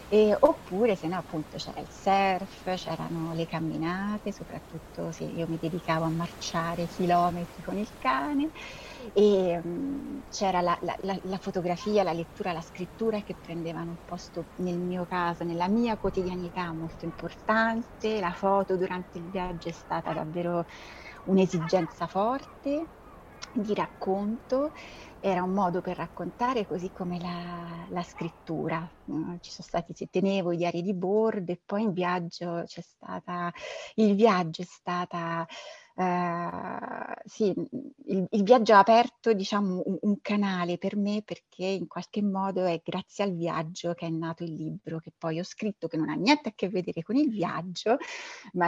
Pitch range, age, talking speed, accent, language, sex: 170-210 Hz, 30-49, 160 wpm, native, Italian, female